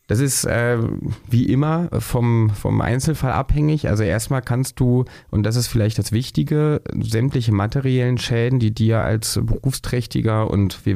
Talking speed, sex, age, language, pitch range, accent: 155 wpm, male, 30-49, German, 100-120 Hz, German